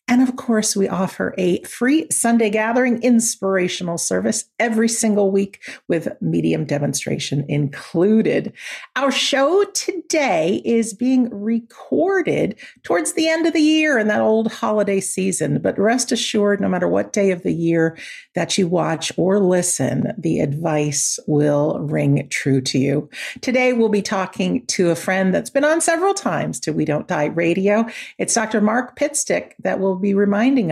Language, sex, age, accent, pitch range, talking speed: English, female, 50-69, American, 180-245 Hz, 160 wpm